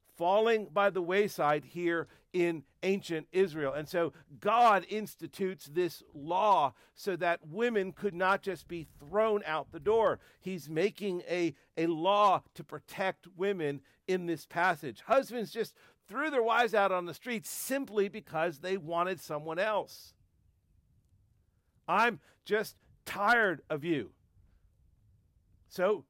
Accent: American